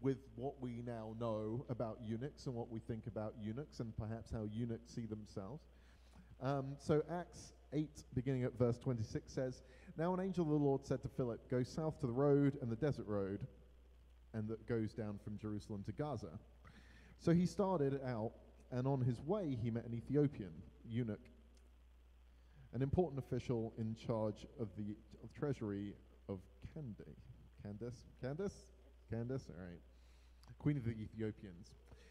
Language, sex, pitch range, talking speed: English, male, 100-135 Hz, 160 wpm